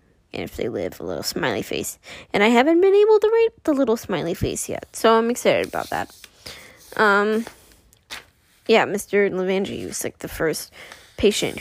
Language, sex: English, female